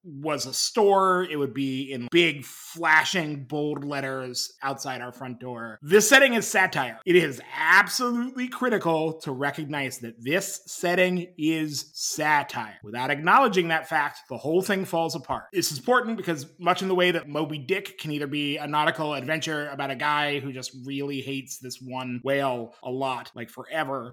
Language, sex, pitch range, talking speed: English, male, 140-180 Hz, 175 wpm